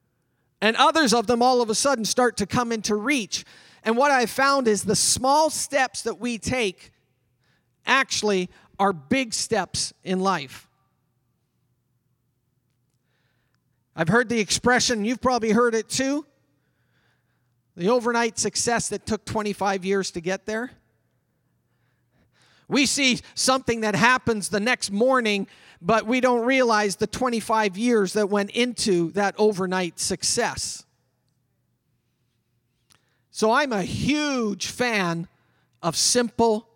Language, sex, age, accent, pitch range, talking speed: English, male, 40-59, American, 165-240 Hz, 125 wpm